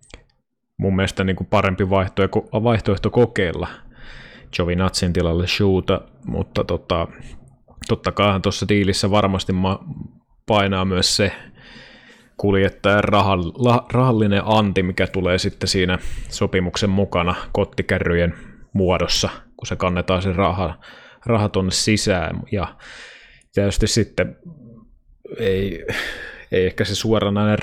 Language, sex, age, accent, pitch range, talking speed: Finnish, male, 20-39, native, 90-105 Hz, 100 wpm